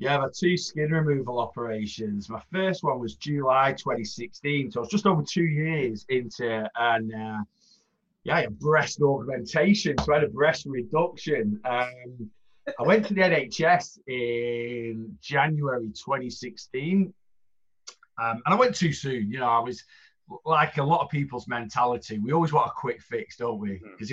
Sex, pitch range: male, 110-160 Hz